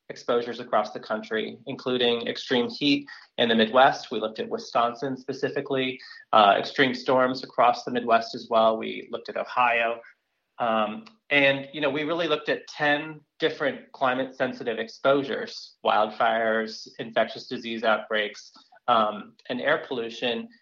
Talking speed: 135 wpm